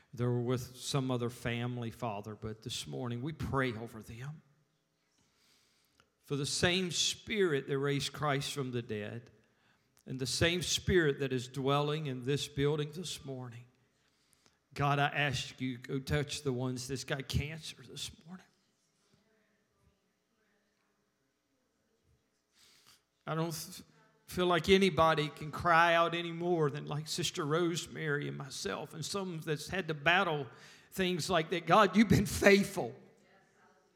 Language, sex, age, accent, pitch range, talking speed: English, male, 40-59, American, 130-165 Hz, 140 wpm